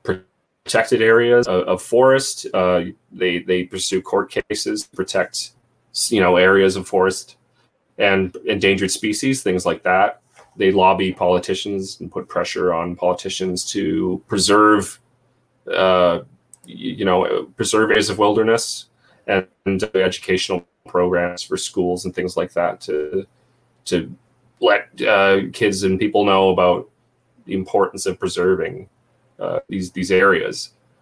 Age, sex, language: 30-49, male, English